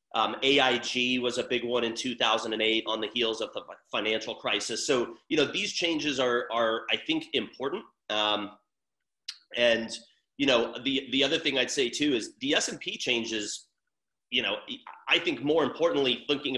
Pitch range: 115-130 Hz